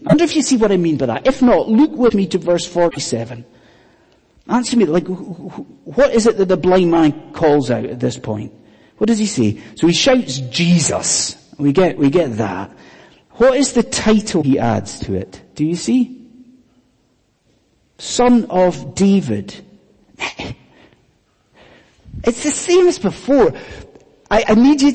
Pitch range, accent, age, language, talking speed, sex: 160-255 Hz, British, 40-59, English, 165 wpm, male